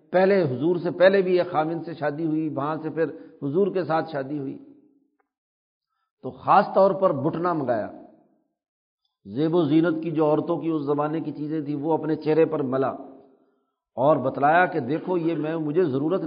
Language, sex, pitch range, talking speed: Urdu, male, 155-200 Hz, 180 wpm